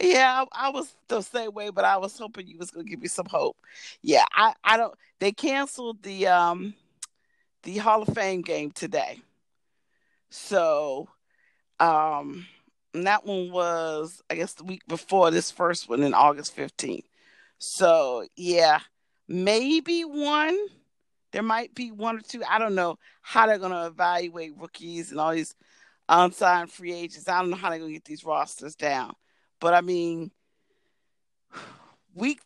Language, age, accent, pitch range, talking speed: English, 40-59, American, 175-235 Hz, 160 wpm